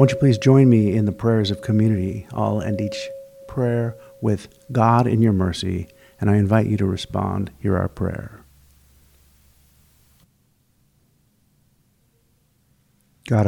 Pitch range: 95-110 Hz